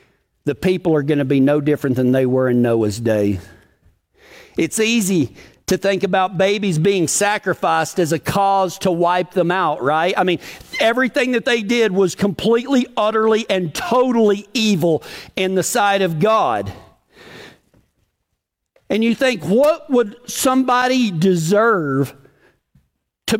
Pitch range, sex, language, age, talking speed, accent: 155-215 Hz, male, English, 50-69, 140 wpm, American